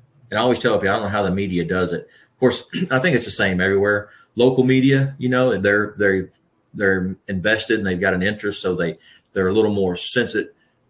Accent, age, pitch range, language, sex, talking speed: American, 40-59, 90-110 Hz, English, male, 220 wpm